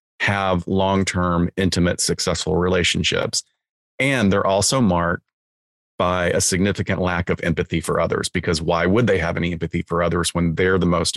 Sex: male